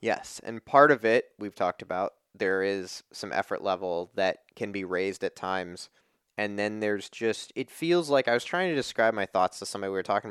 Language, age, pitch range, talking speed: English, 20-39, 105-150 Hz, 220 wpm